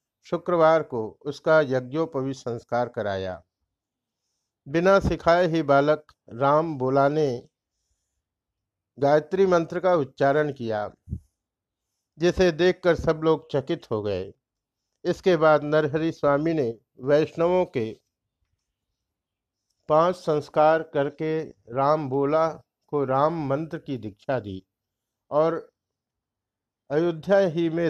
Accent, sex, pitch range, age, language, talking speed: native, male, 115-160 Hz, 50-69, Hindi, 100 wpm